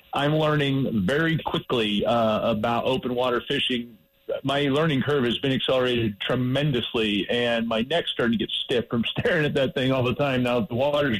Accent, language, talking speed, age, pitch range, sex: American, English, 190 wpm, 40-59, 125-150 Hz, male